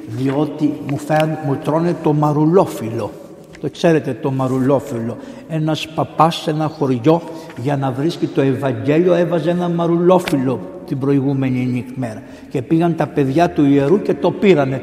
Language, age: Greek, 60-79